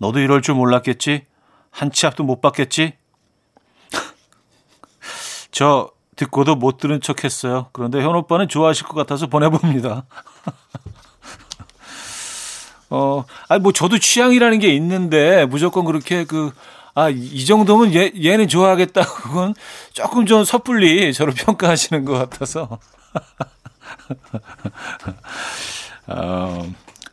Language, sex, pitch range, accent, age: Korean, male, 130-170 Hz, native, 40-59